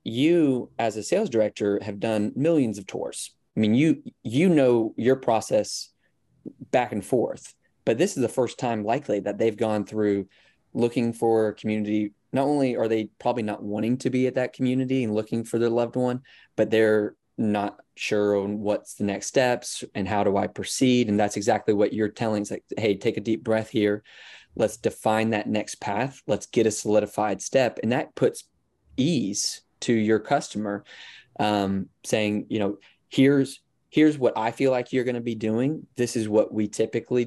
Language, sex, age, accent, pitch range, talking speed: English, male, 20-39, American, 105-120 Hz, 190 wpm